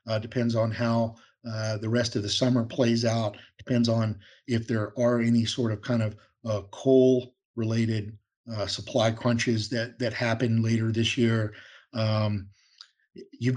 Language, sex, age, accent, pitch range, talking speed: English, male, 50-69, American, 110-125 Hz, 160 wpm